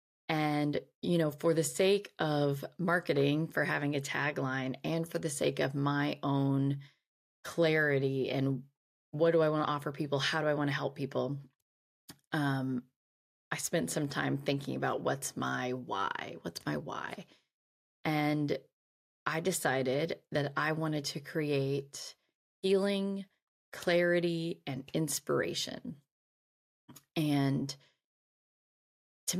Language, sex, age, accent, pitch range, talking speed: English, female, 20-39, American, 135-160 Hz, 125 wpm